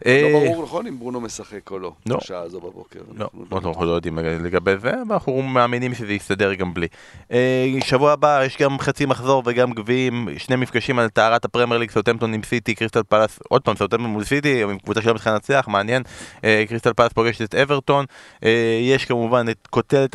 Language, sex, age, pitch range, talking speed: Hebrew, male, 20-39, 105-125 Hz, 170 wpm